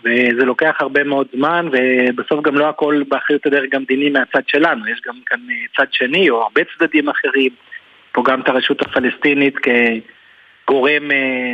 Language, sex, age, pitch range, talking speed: Hebrew, male, 30-49, 135-155 Hz, 150 wpm